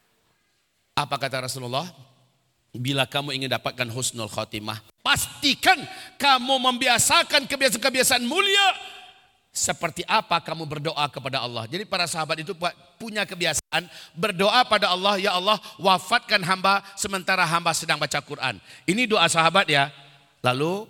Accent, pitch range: native, 135-190 Hz